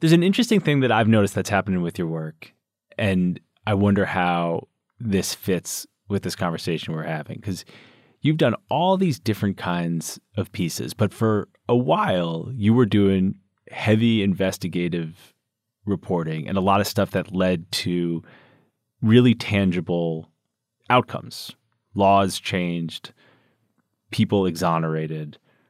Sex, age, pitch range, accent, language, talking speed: male, 30-49, 90-110 Hz, American, English, 135 wpm